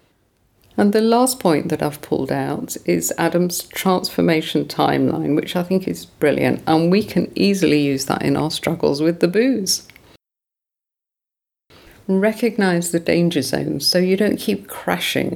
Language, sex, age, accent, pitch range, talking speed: English, female, 50-69, British, 155-200 Hz, 150 wpm